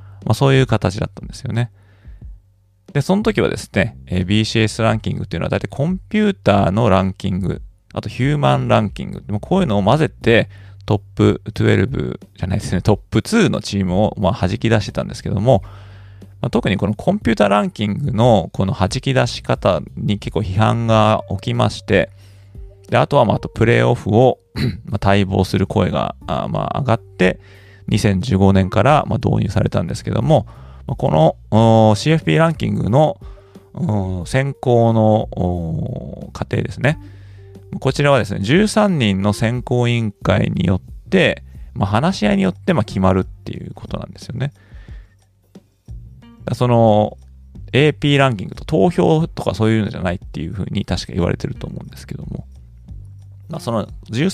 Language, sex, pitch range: Japanese, male, 95-120 Hz